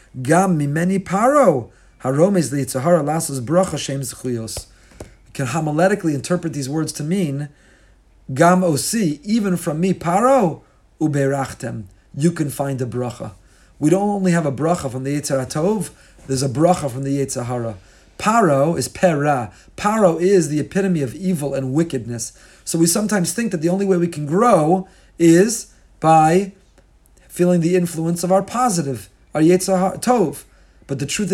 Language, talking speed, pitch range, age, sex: English, 135 wpm, 140-190 Hz, 40-59, male